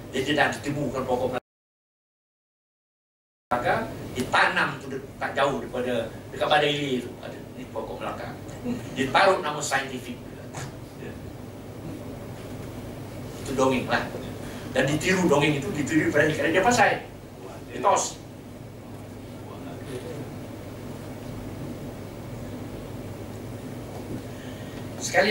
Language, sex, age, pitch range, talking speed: Malay, male, 60-79, 120-145 Hz, 80 wpm